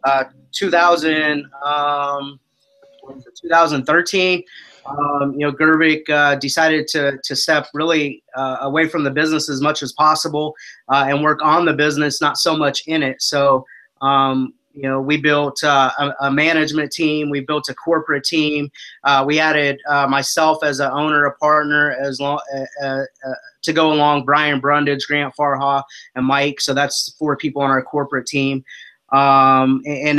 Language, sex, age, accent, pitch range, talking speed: English, male, 20-39, American, 140-155 Hz, 165 wpm